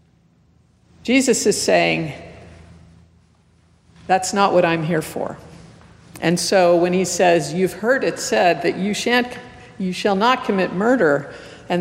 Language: English